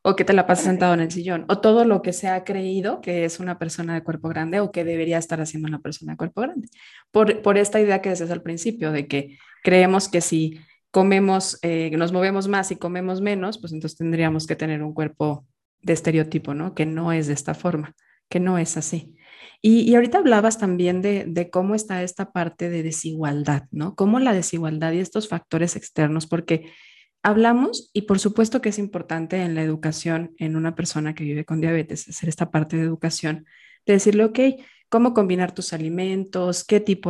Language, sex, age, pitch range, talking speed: Spanish, female, 20-39, 165-200 Hz, 205 wpm